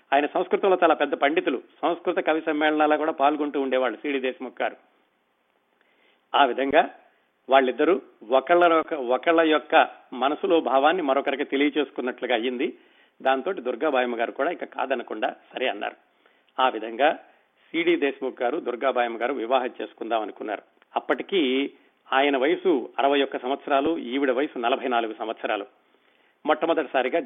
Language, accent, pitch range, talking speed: Telugu, native, 130-155 Hz, 110 wpm